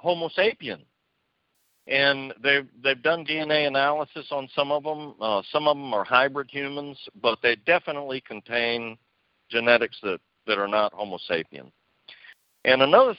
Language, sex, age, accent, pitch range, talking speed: English, male, 60-79, American, 95-140 Hz, 145 wpm